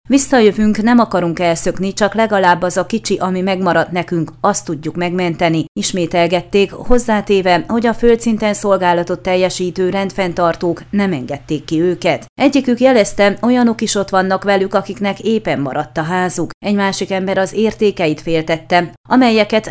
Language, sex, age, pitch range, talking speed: Hungarian, female, 30-49, 170-205 Hz, 140 wpm